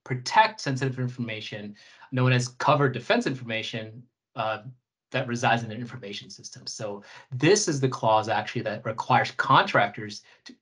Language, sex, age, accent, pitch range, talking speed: English, male, 30-49, American, 115-135 Hz, 140 wpm